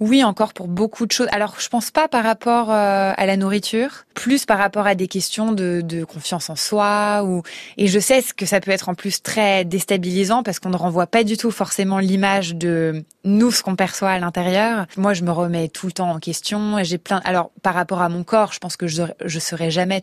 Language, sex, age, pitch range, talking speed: French, female, 20-39, 175-210 Hz, 235 wpm